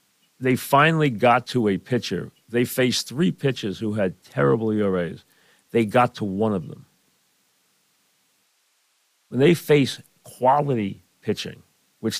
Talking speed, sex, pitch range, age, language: 130 wpm, male, 100-125 Hz, 50-69, English